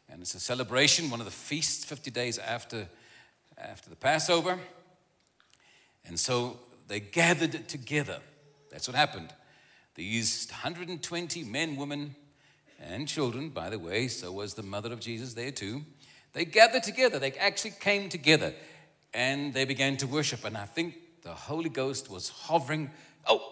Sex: male